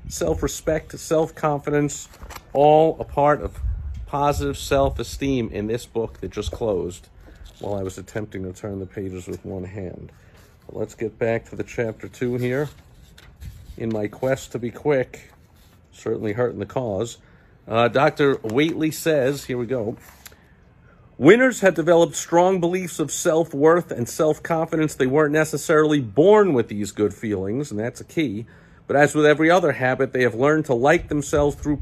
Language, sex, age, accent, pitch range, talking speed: English, male, 50-69, American, 115-150 Hz, 160 wpm